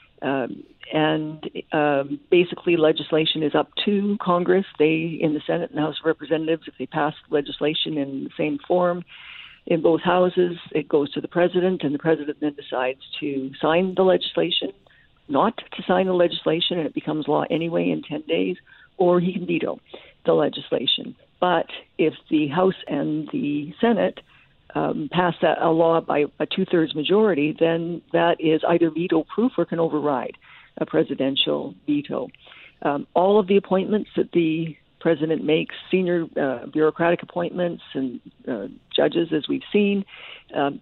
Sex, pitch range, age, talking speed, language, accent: female, 150-180 Hz, 50-69, 160 wpm, English, American